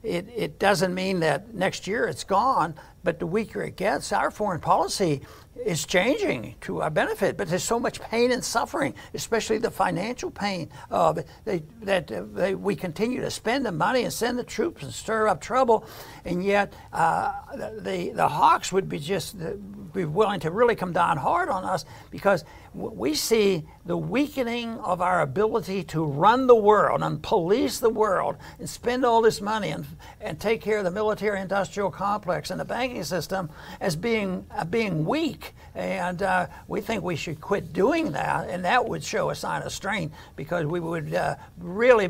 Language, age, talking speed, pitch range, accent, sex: English, 60-79, 185 wpm, 175-220 Hz, American, male